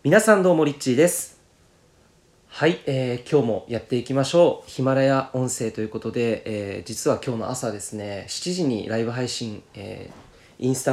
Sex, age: male, 20-39